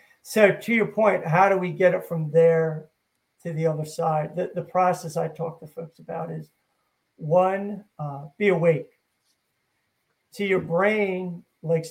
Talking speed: 160 wpm